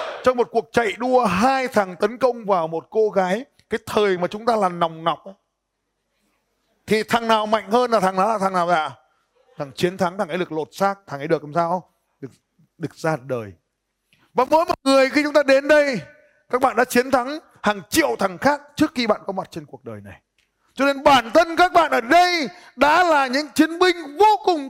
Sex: male